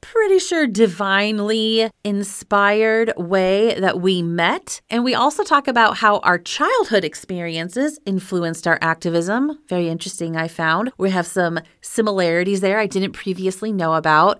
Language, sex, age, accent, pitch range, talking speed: English, female, 30-49, American, 175-225 Hz, 140 wpm